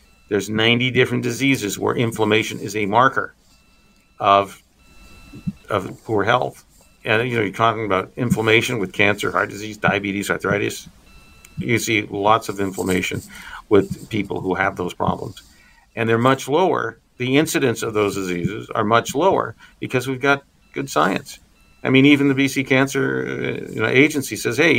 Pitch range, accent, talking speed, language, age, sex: 100-140 Hz, American, 160 wpm, English, 50-69, male